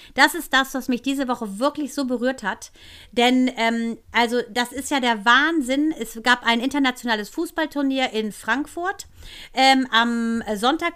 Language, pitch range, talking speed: German, 235-285 Hz, 160 wpm